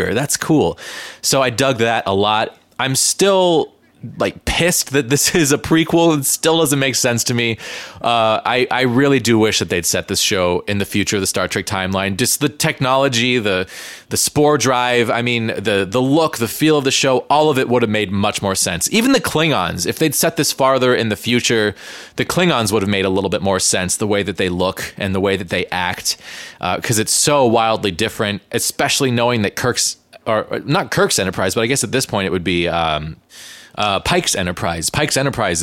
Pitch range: 100-140 Hz